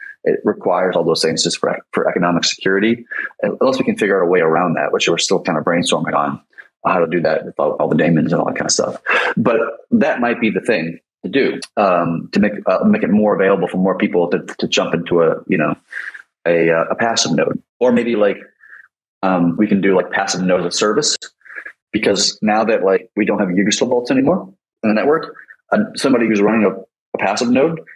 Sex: male